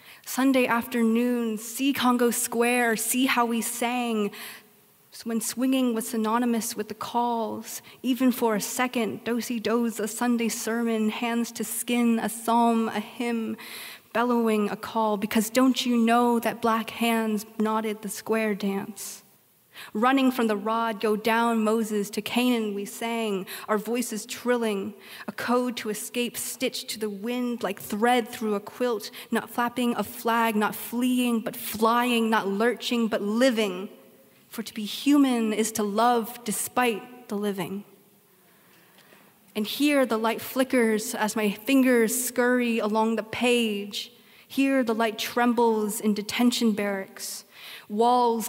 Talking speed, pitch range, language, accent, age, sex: 140 wpm, 215-240 Hz, English, American, 30-49, female